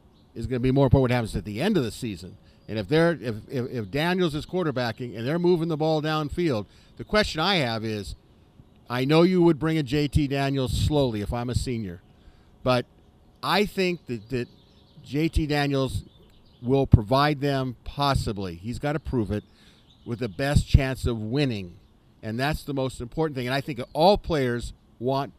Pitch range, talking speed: 115-150 Hz, 190 wpm